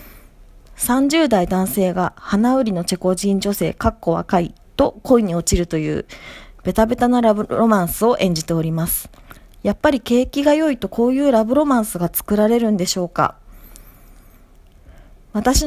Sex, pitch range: female, 185-245 Hz